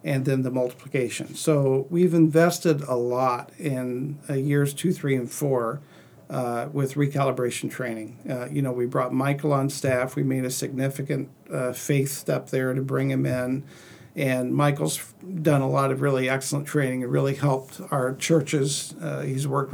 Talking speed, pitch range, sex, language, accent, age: 175 wpm, 135-160 Hz, male, English, American, 50-69